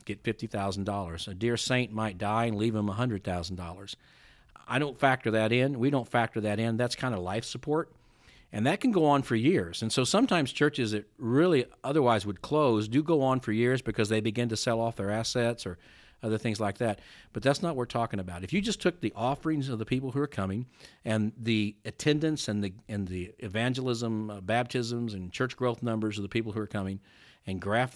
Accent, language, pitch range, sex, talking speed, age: American, English, 100-130 Hz, male, 225 wpm, 50-69